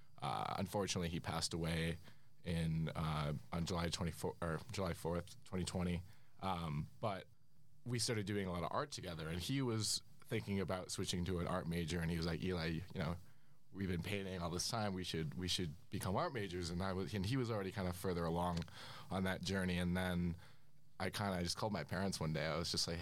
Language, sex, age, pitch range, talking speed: English, male, 20-39, 90-115 Hz, 215 wpm